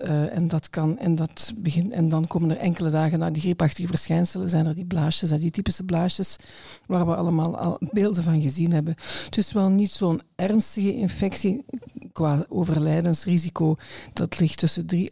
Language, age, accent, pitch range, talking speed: Dutch, 50-69, Dutch, 165-195 Hz, 180 wpm